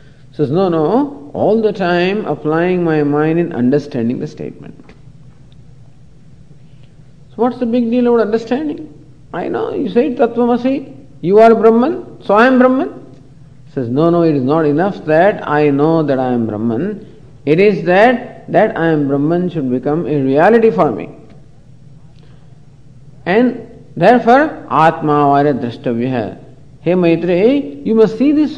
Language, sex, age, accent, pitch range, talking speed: English, male, 50-69, Indian, 135-210 Hz, 145 wpm